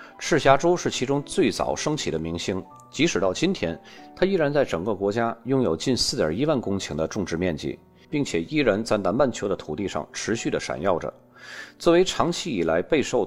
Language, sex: Chinese, male